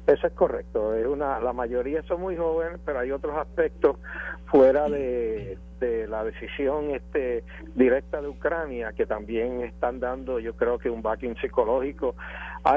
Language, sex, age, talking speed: Spanish, male, 60-79, 160 wpm